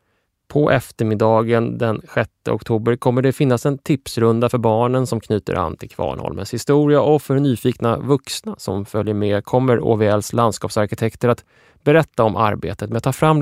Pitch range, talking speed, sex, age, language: 105-130 Hz, 160 wpm, male, 20-39, English